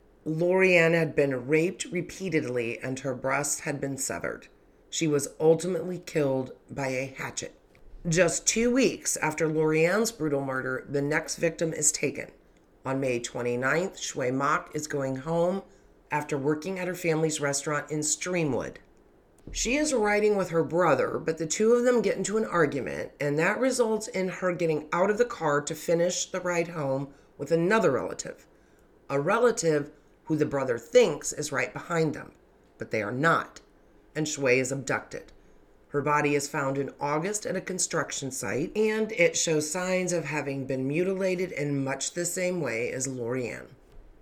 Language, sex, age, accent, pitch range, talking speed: English, female, 40-59, American, 140-180 Hz, 165 wpm